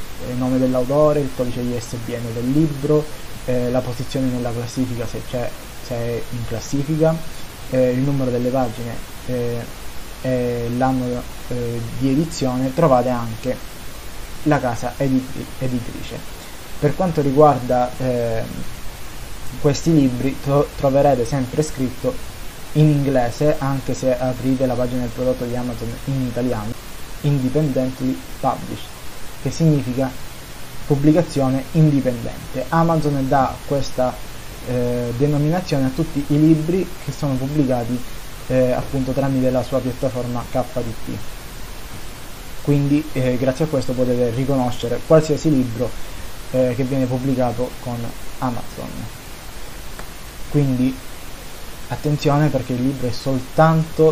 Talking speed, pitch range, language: 115 wpm, 125-140 Hz, Italian